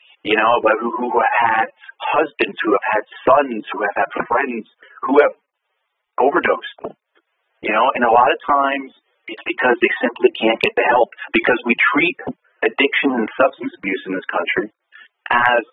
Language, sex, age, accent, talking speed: English, male, 40-59, American, 165 wpm